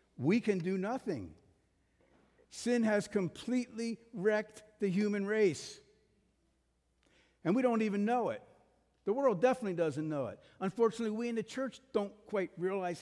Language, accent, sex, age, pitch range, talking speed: English, American, male, 60-79, 170-235 Hz, 145 wpm